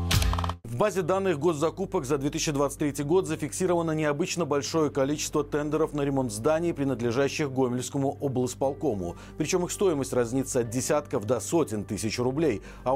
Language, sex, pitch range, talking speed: Russian, male, 130-175 Hz, 135 wpm